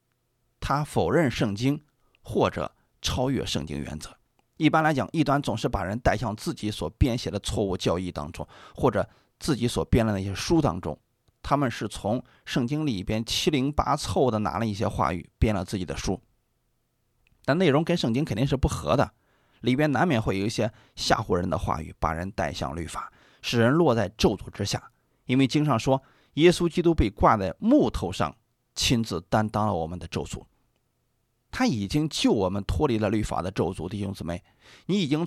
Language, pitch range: Chinese, 100-140 Hz